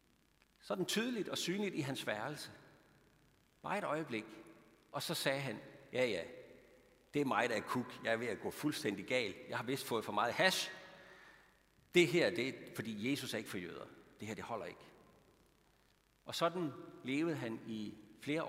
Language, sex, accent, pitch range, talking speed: Danish, male, native, 115-160 Hz, 185 wpm